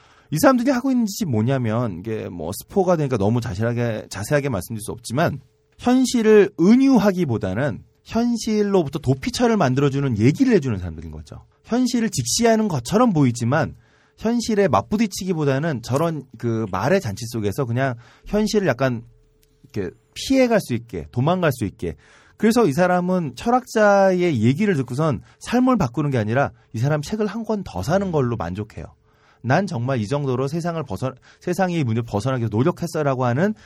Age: 30-49